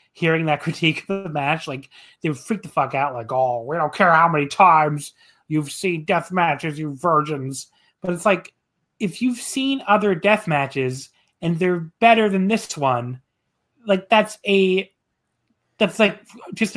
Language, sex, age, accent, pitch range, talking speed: English, male, 30-49, American, 145-195 Hz, 170 wpm